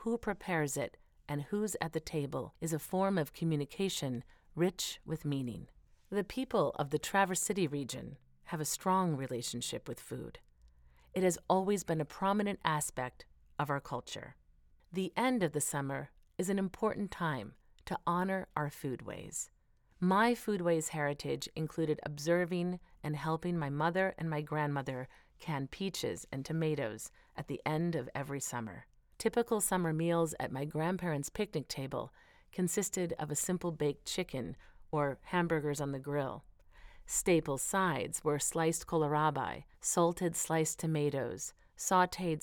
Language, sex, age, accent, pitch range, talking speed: English, female, 40-59, American, 140-180 Hz, 145 wpm